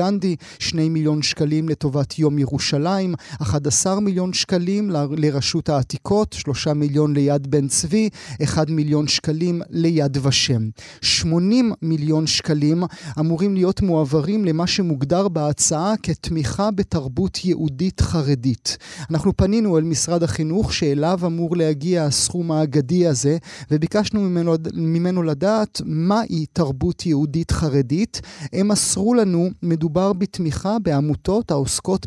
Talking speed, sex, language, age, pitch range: 115 wpm, male, Hebrew, 30-49, 150-185 Hz